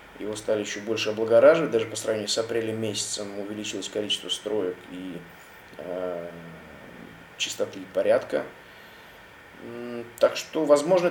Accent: native